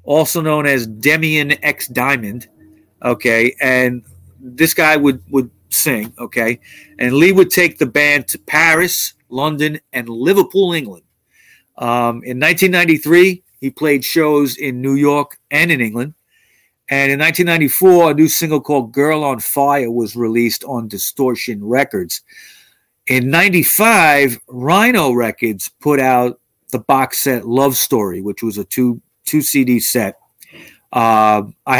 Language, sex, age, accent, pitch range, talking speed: English, male, 40-59, American, 115-150 Hz, 140 wpm